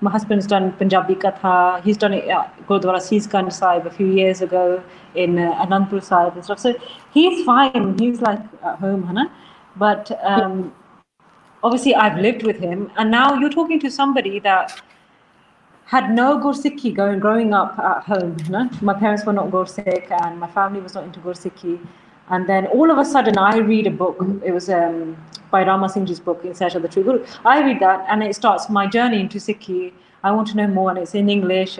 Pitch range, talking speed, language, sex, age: 180-220 Hz, 195 wpm, Punjabi, female, 30-49